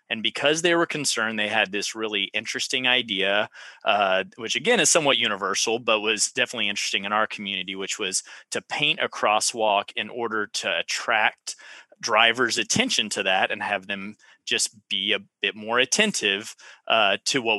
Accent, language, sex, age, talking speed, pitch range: American, English, male, 30-49, 170 wpm, 110-145 Hz